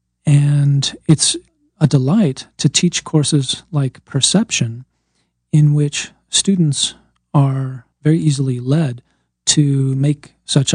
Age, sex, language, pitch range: 40-59, male, English, 120-150 Hz